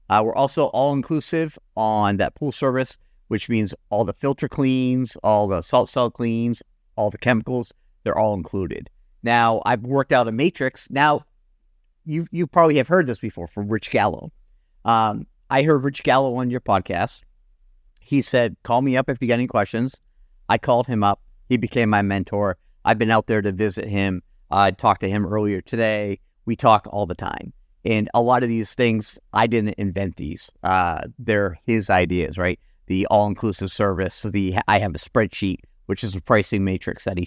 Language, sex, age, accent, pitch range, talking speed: English, male, 50-69, American, 100-120 Hz, 190 wpm